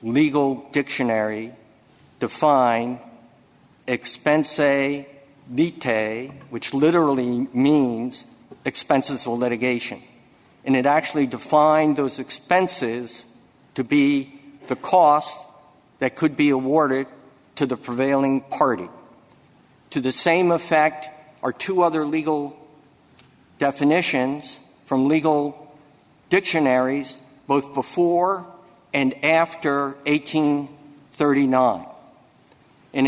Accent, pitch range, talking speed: American, 130-155 Hz, 85 wpm